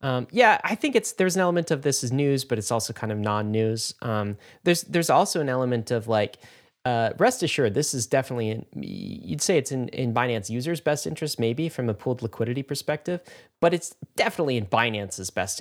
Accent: American